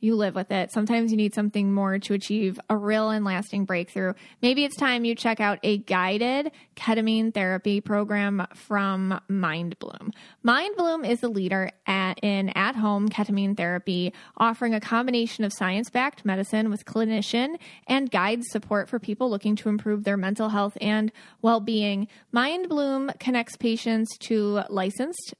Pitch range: 205-240 Hz